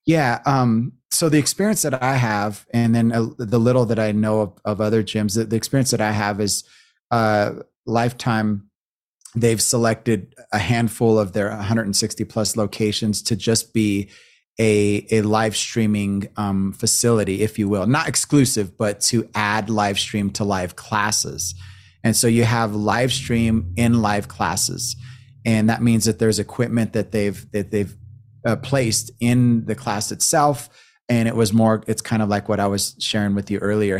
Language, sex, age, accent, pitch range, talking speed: English, male, 30-49, American, 105-120 Hz, 175 wpm